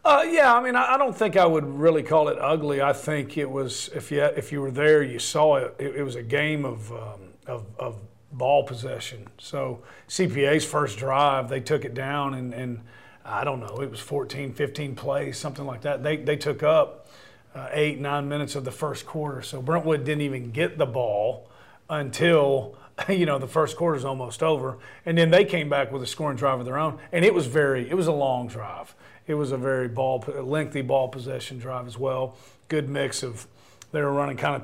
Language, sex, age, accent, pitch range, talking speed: English, male, 40-59, American, 130-150 Hz, 225 wpm